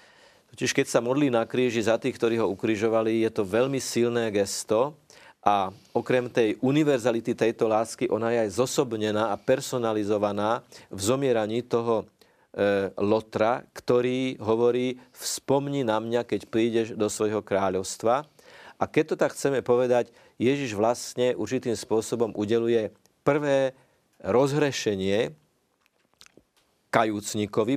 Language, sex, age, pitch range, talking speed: Slovak, male, 40-59, 110-125 Hz, 125 wpm